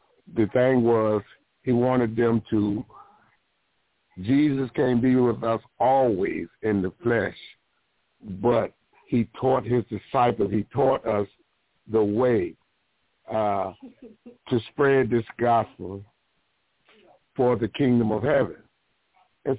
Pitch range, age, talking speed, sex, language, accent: 110-125 Hz, 60-79, 115 wpm, male, English, American